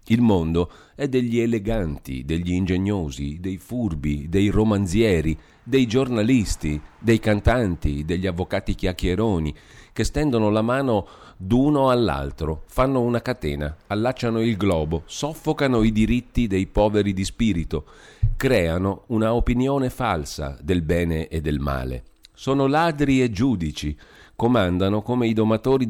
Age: 40-59